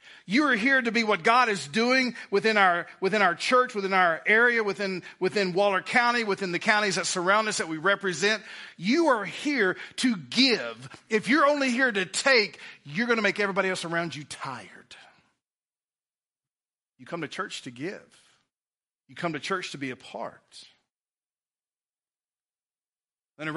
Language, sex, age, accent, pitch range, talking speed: English, male, 40-59, American, 155-200 Hz, 165 wpm